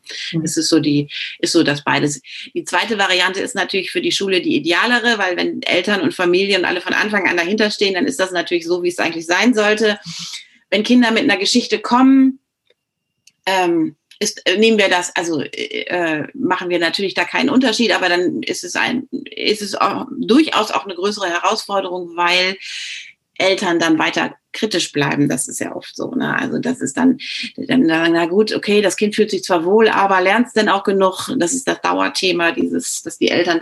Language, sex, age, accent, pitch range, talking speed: German, female, 30-49, German, 165-245 Hz, 200 wpm